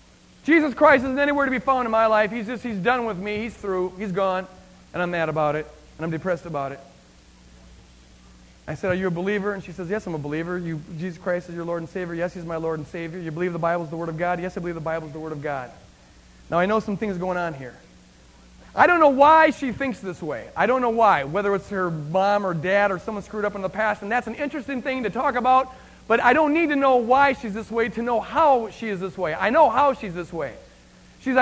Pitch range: 175-245 Hz